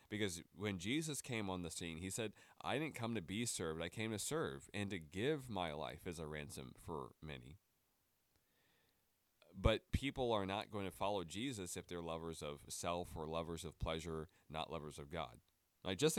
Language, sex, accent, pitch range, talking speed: English, male, American, 85-115 Hz, 195 wpm